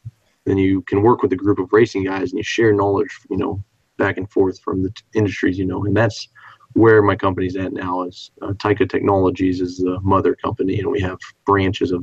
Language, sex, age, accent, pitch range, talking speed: English, male, 20-39, American, 100-115 Hz, 225 wpm